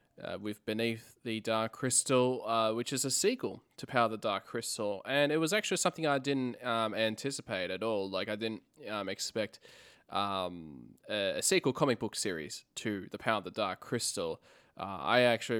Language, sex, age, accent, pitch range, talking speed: English, male, 20-39, Australian, 110-130 Hz, 190 wpm